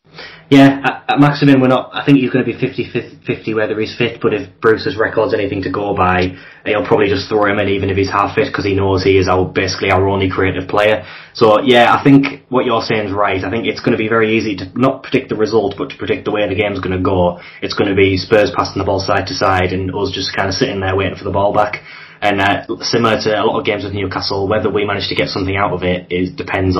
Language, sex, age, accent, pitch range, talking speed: English, male, 10-29, British, 95-110 Hz, 275 wpm